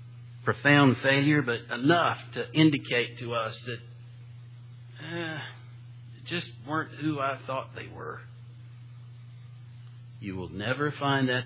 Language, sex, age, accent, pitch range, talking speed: English, male, 50-69, American, 115-120 Hz, 120 wpm